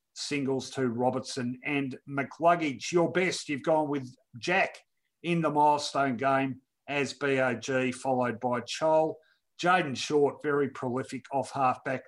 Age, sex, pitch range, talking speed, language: 50-69, male, 130-150 Hz, 130 wpm, English